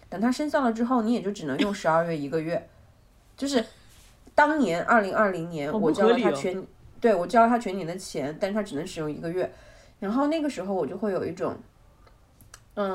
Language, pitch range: Chinese, 180-250 Hz